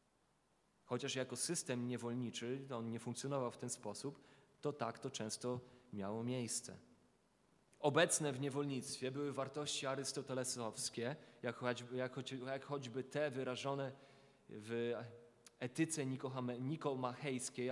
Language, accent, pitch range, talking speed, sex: Polish, native, 120-140 Hz, 105 wpm, male